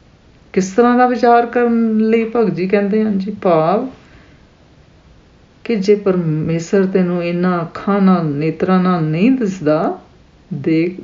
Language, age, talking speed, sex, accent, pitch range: English, 50-69, 130 wpm, female, Indian, 165-210 Hz